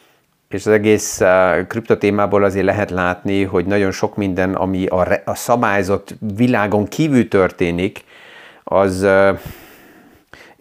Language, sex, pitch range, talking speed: Hungarian, male, 100-115 Hz, 125 wpm